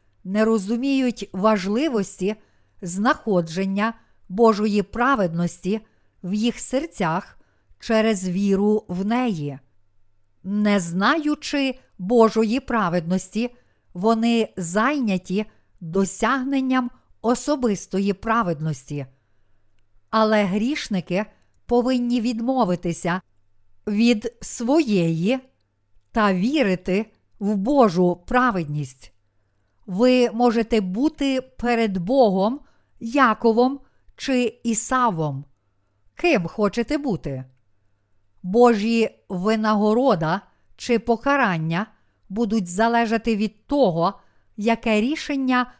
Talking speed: 70 wpm